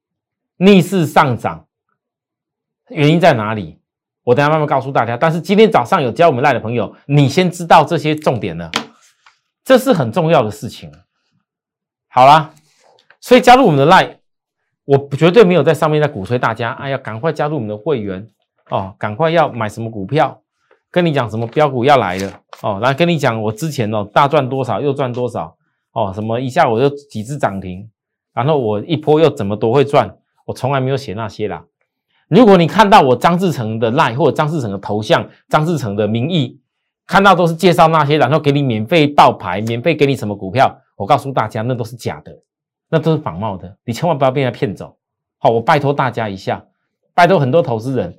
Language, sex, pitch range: Chinese, male, 115-165 Hz